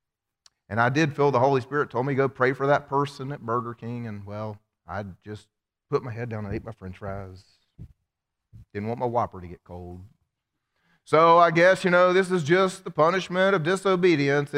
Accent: American